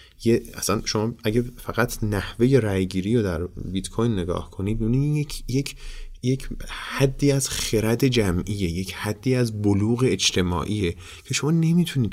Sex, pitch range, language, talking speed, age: male, 95-125 Hz, Persian, 145 wpm, 30-49